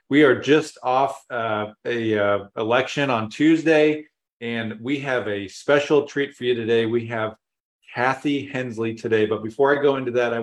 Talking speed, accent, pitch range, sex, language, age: 180 wpm, American, 110-135 Hz, male, English, 40-59